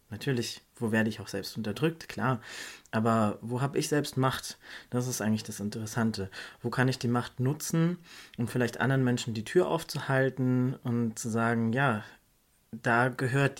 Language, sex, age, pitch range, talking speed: German, male, 20-39, 110-130 Hz, 170 wpm